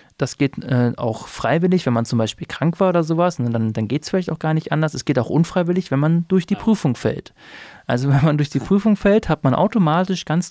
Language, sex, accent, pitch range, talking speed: German, male, German, 125-160 Hz, 240 wpm